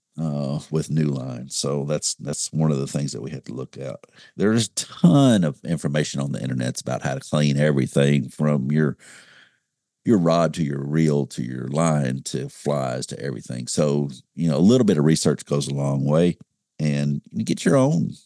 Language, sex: English, male